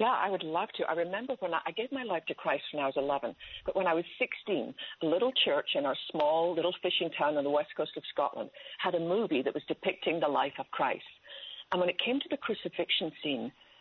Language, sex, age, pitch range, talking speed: English, female, 60-79, 170-230 Hz, 250 wpm